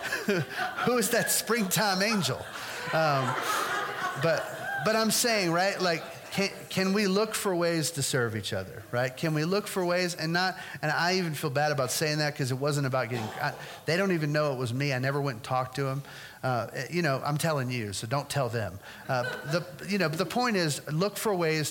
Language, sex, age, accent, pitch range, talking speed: English, male, 40-59, American, 120-170 Hz, 210 wpm